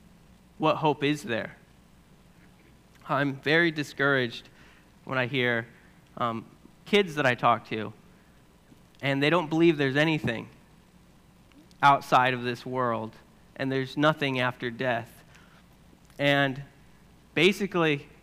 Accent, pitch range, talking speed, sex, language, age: American, 135-180 Hz, 110 wpm, male, English, 30-49